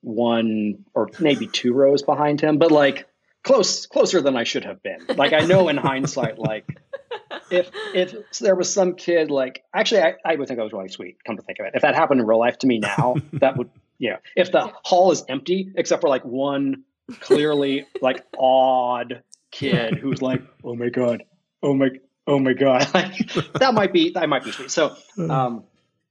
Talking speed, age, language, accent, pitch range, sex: 200 wpm, 30-49, English, American, 120-160 Hz, male